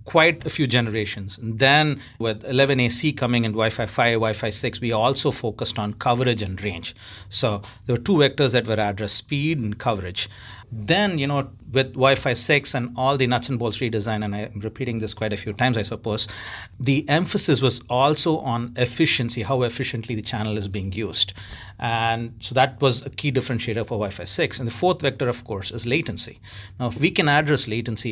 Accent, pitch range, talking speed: Indian, 110-135 Hz, 195 wpm